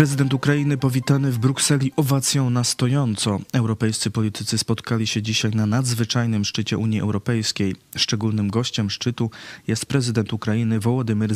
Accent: native